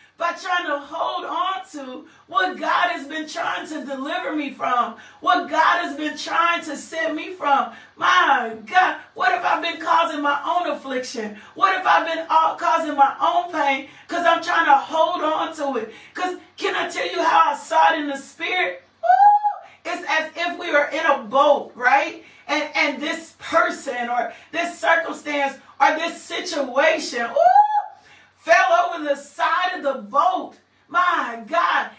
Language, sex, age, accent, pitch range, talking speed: English, female, 40-59, American, 280-350 Hz, 175 wpm